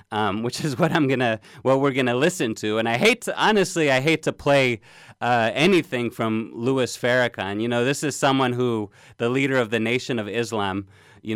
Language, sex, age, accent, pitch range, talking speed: English, male, 30-49, American, 115-140 Hz, 205 wpm